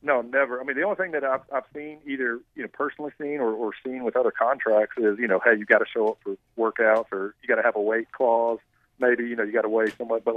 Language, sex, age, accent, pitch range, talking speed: English, male, 40-59, American, 120-140 Hz, 270 wpm